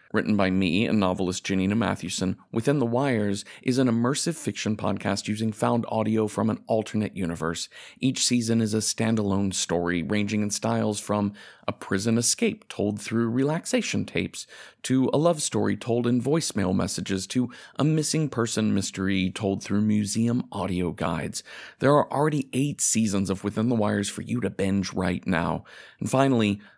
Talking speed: 165 wpm